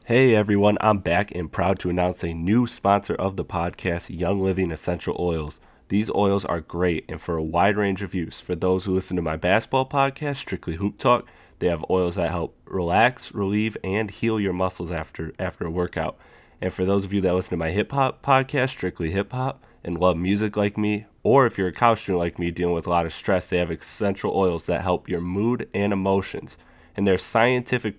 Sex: male